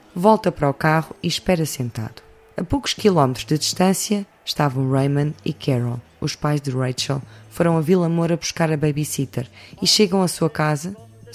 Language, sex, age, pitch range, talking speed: Portuguese, female, 20-39, 135-175 Hz, 170 wpm